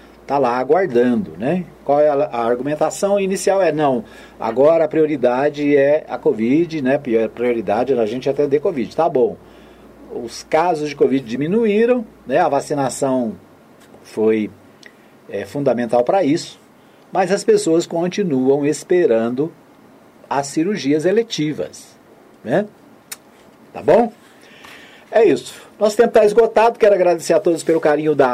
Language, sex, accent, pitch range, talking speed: Portuguese, male, Brazilian, 125-180 Hz, 140 wpm